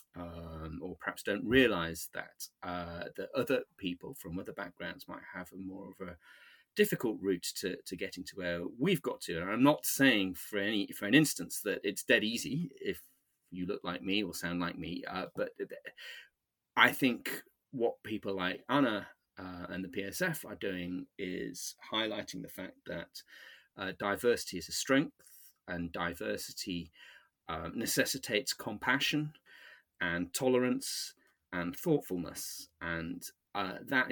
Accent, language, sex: British, English, male